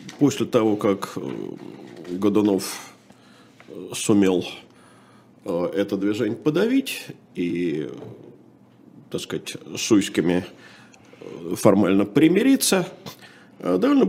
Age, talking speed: 50-69, 70 wpm